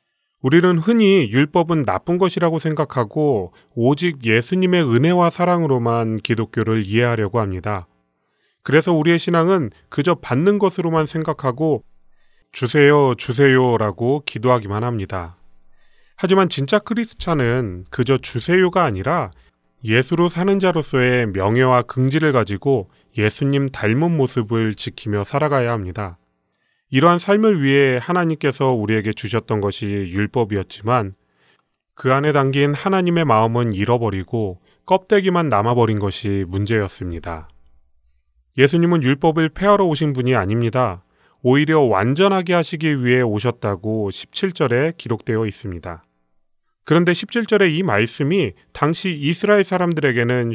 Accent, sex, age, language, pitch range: native, male, 30-49, Korean, 105-165 Hz